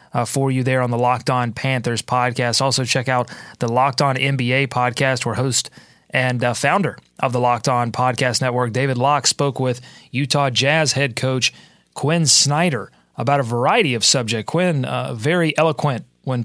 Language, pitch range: English, 125-155 Hz